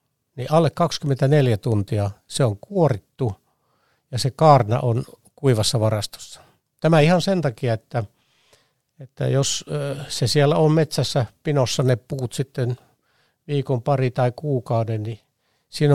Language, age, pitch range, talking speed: Finnish, 60-79, 120-145 Hz, 130 wpm